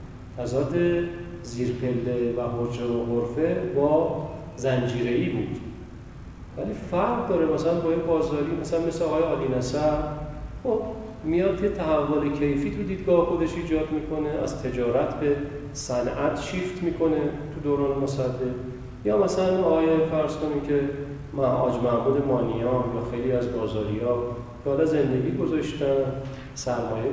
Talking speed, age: 125 wpm, 40-59